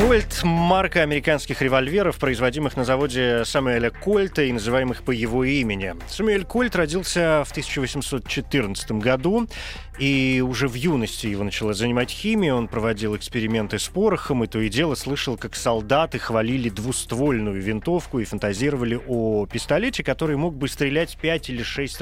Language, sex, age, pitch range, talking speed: Russian, male, 30-49, 115-150 Hz, 150 wpm